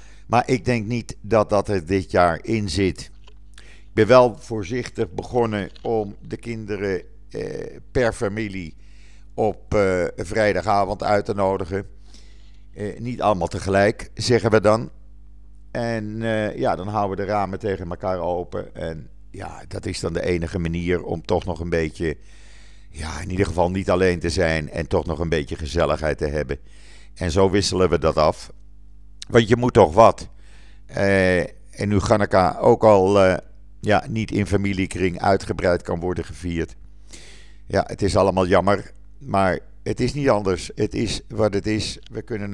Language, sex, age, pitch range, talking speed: Dutch, male, 50-69, 85-110 Hz, 165 wpm